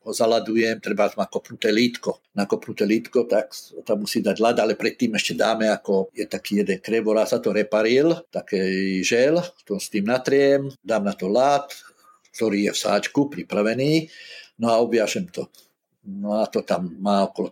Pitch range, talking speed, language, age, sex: 105-130 Hz, 170 wpm, Slovak, 50-69, male